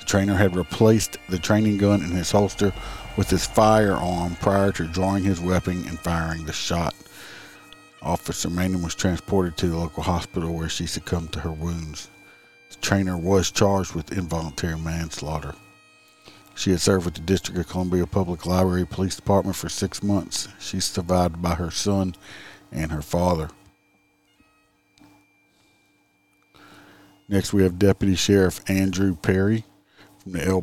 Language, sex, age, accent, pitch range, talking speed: English, male, 50-69, American, 90-100 Hz, 150 wpm